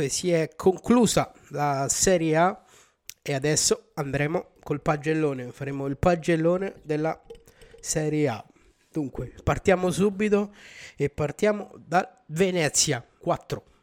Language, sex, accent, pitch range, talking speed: Italian, male, native, 145-180 Hz, 110 wpm